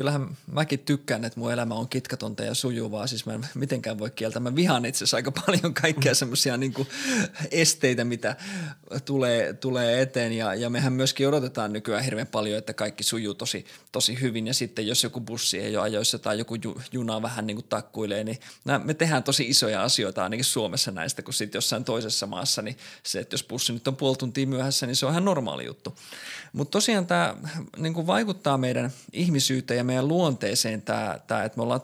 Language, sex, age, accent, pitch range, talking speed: Finnish, male, 20-39, native, 115-150 Hz, 190 wpm